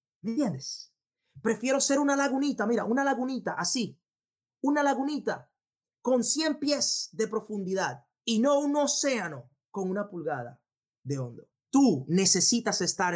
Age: 30-49